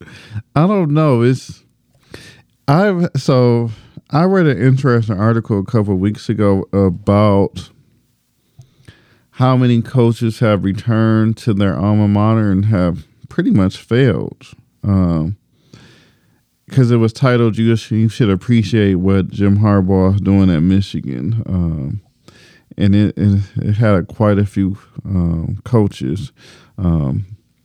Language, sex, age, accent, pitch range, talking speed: English, male, 40-59, American, 95-115 Hz, 125 wpm